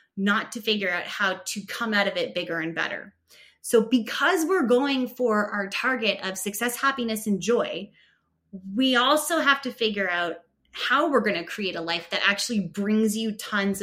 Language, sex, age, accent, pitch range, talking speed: English, female, 20-39, American, 180-245 Hz, 185 wpm